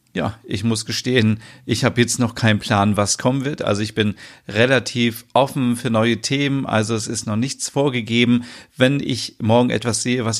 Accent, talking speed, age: German, 190 wpm, 40-59